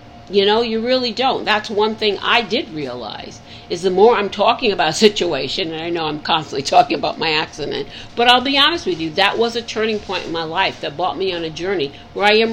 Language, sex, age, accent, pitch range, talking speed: English, female, 50-69, American, 165-225 Hz, 245 wpm